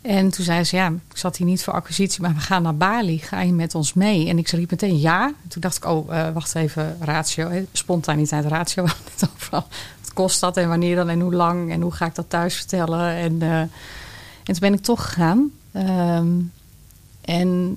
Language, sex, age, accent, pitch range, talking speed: Dutch, female, 30-49, Dutch, 165-195 Hz, 210 wpm